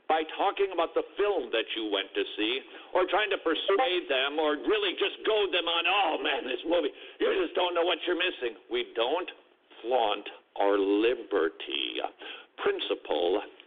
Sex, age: male, 60-79